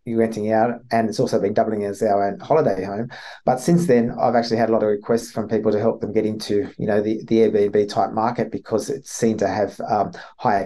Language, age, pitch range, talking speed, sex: English, 30-49, 105-115 Hz, 240 wpm, male